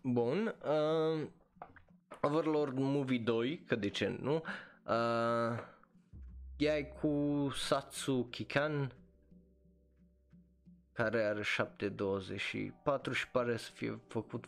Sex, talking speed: male, 90 wpm